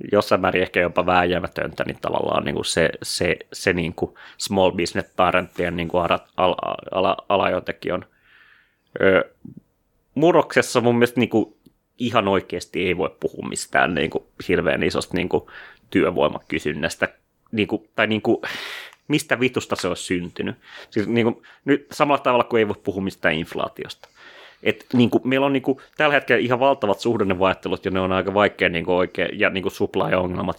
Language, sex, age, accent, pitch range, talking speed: Finnish, male, 30-49, native, 90-115 Hz, 145 wpm